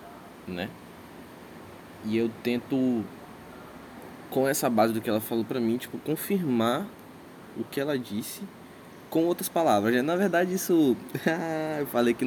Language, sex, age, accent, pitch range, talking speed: Portuguese, male, 20-39, Brazilian, 105-130 Hz, 135 wpm